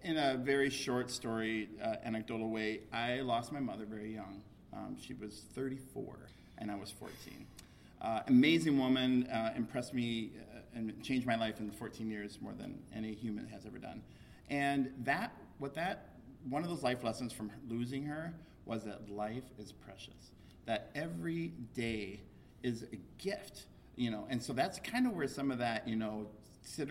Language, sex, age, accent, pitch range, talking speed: English, male, 40-59, American, 110-130 Hz, 180 wpm